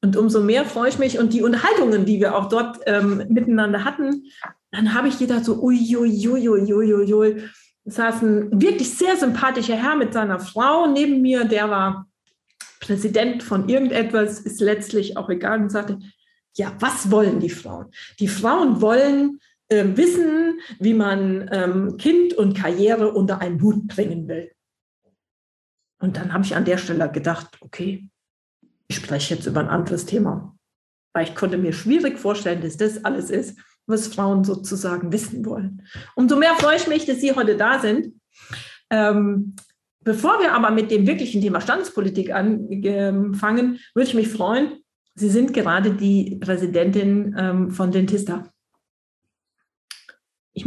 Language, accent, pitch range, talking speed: German, German, 195-240 Hz, 150 wpm